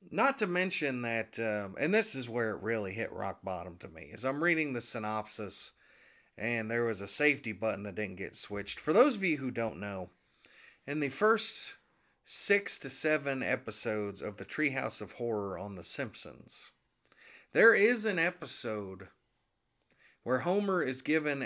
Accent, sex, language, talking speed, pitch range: American, male, English, 170 wpm, 110-150 Hz